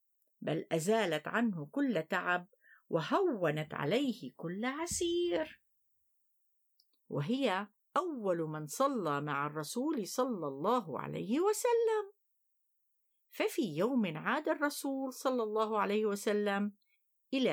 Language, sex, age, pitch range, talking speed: Arabic, female, 50-69, 180-280 Hz, 95 wpm